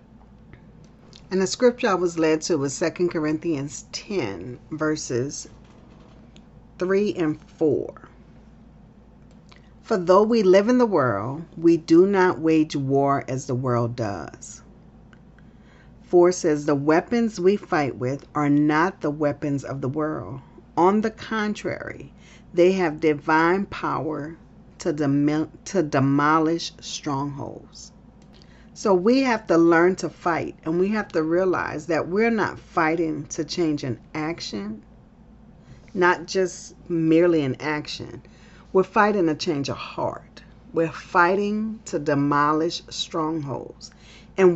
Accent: American